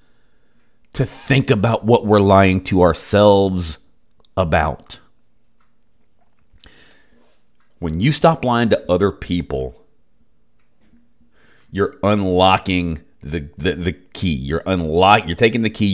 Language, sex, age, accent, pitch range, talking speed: English, male, 40-59, American, 90-120 Hz, 105 wpm